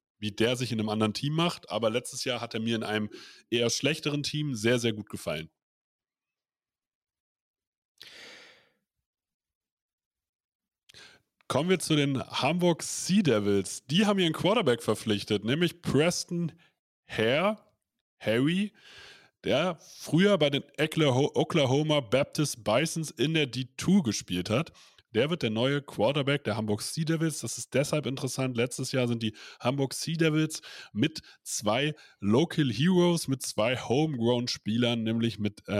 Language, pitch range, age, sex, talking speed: German, 115-160 Hz, 30-49, male, 135 wpm